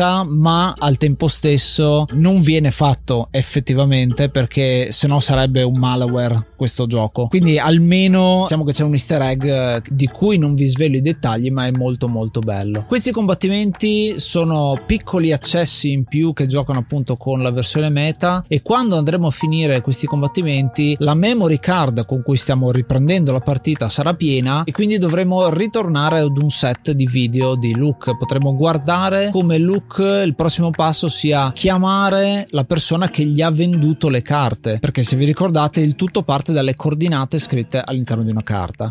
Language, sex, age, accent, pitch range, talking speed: Italian, male, 20-39, native, 130-170 Hz, 170 wpm